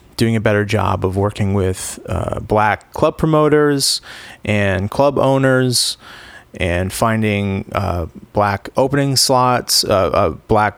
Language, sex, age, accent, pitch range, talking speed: English, male, 30-49, American, 100-125 Hz, 130 wpm